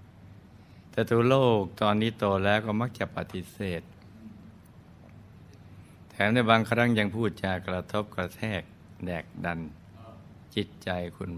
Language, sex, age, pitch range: Thai, male, 60-79, 90-110 Hz